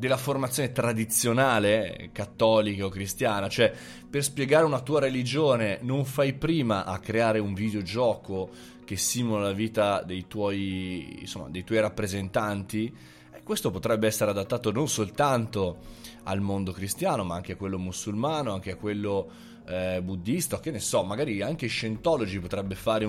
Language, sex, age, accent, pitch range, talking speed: Italian, male, 20-39, native, 95-125 Hz, 155 wpm